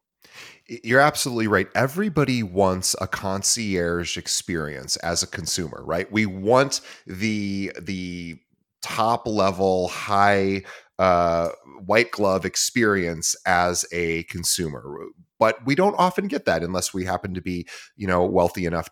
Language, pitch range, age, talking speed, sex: English, 90-110 Hz, 30-49, 130 wpm, male